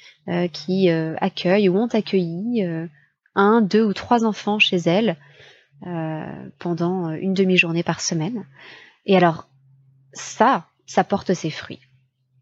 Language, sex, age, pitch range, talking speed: French, female, 20-39, 175-235 Hz, 115 wpm